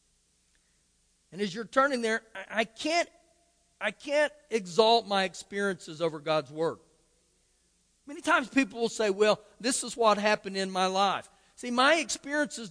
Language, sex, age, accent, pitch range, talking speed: English, male, 50-69, American, 160-230 Hz, 140 wpm